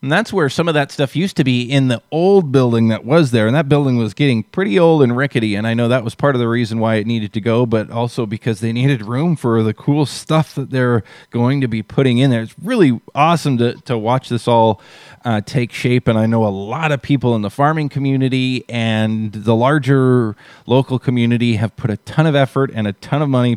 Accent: American